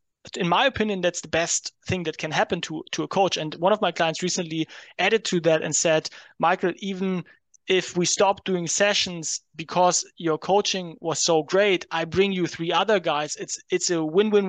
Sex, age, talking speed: male, 30-49, 205 wpm